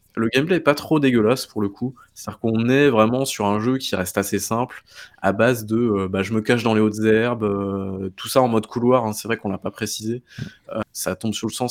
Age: 20-39